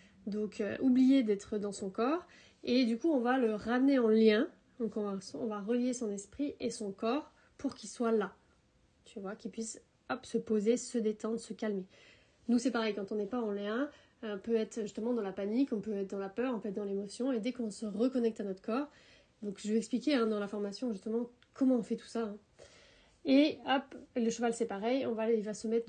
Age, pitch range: 30-49, 215-245 Hz